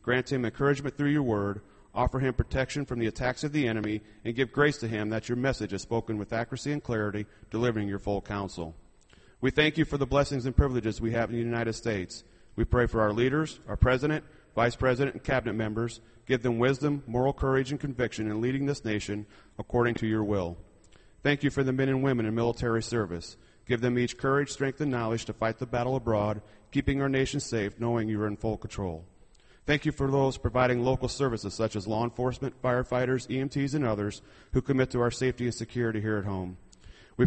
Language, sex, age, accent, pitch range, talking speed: English, male, 30-49, American, 110-135 Hz, 215 wpm